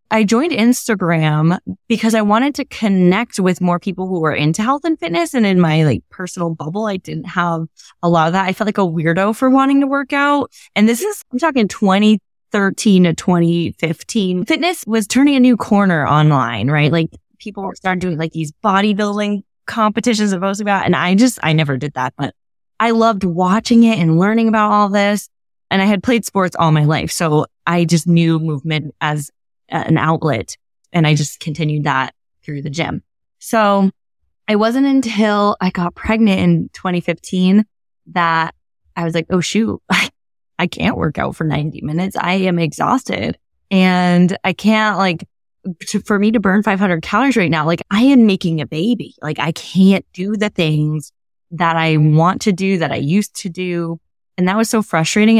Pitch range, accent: 165-215 Hz, American